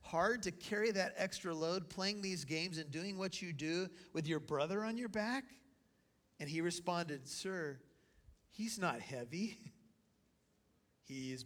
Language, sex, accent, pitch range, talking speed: English, male, American, 145-190 Hz, 145 wpm